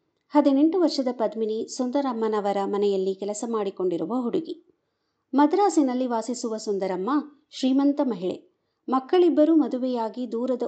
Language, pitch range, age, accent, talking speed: Kannada, 210-295 Hz, 50-69, native, 90 wpm